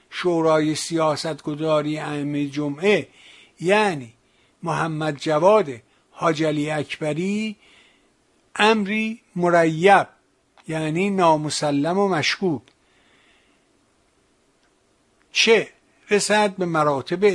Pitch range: 145-185 Hz